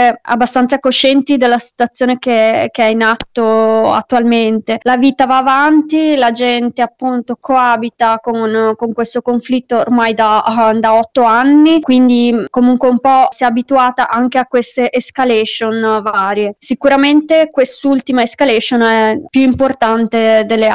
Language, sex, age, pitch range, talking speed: Italian, female, 20-39, 225-255 Hz, 130 wpm